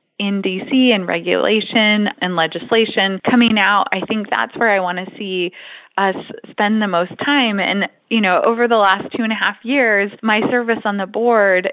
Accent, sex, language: American, female, English